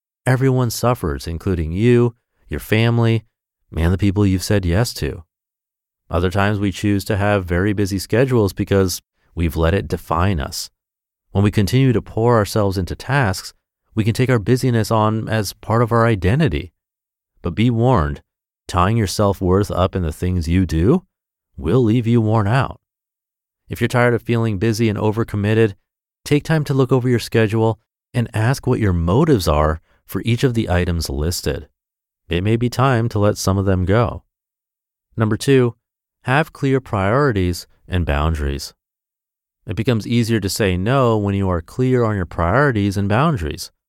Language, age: English, 30-49